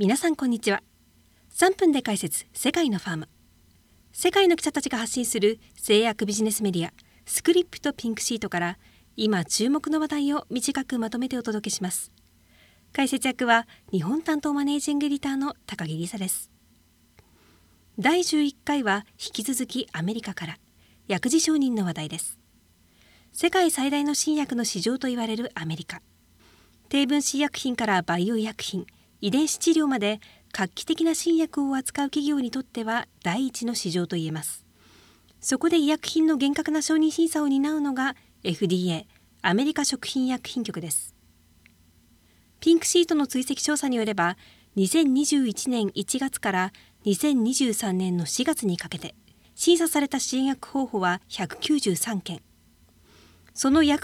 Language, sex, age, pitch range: English, female, 40-59, 180-290 Hz